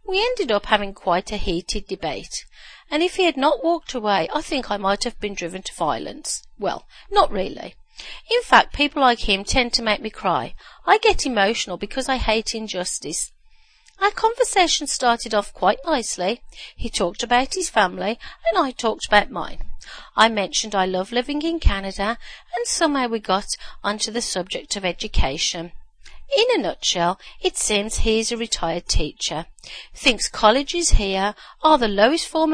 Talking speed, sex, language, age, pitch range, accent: 170 wpm, female, English, 40-59, 200-315 Hz, British